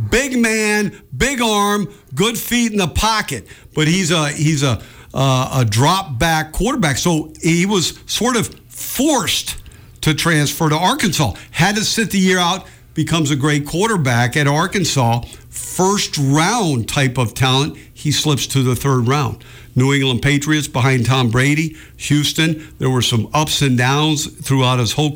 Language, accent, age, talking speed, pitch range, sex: English, American, 60-79, 155 wpm, 125-175 Hz, male